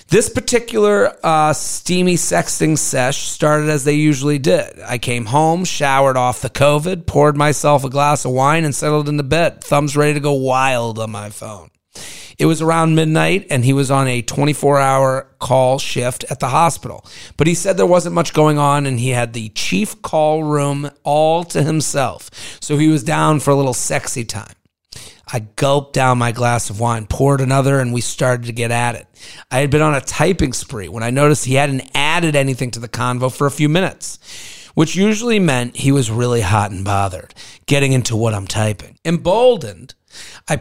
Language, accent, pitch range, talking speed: English, American, 125-155 Hz, 195 wpm